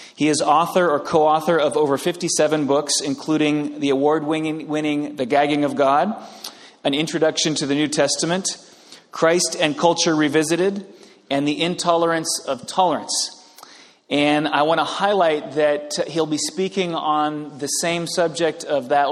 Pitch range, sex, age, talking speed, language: 140-165 Hz, male, 30-49, 155 wpm, English